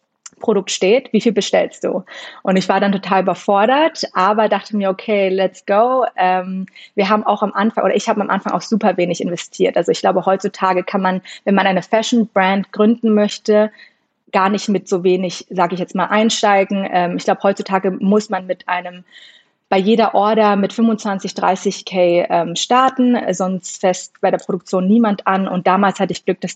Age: 30-49